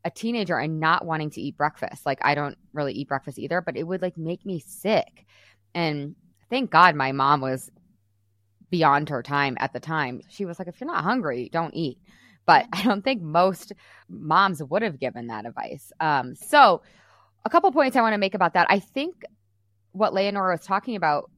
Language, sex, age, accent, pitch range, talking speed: English, female, 20-39, American, 145-195 Hz, 200 wpm